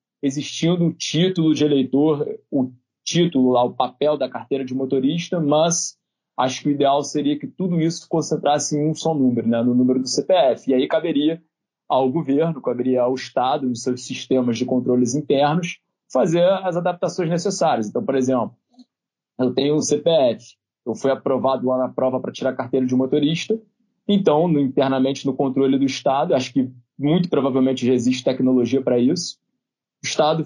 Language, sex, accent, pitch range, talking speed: Portuguese, male, Brazilian, 125-150 Hz, 175 wpm